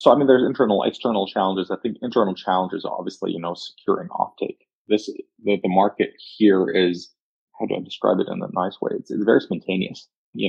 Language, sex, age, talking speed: English, male, 20-39, 210 wpm